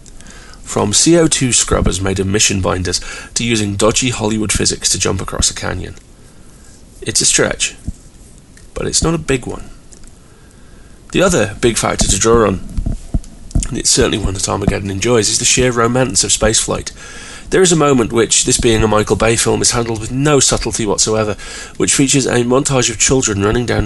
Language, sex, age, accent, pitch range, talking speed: English, male, 30-49, British, 100-120 Hz, 180 wpm